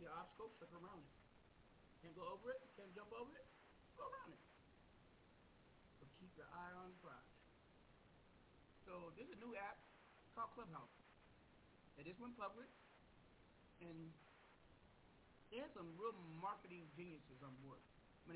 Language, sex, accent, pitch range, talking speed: English, male, American, 155-195 Hz, 125 wpm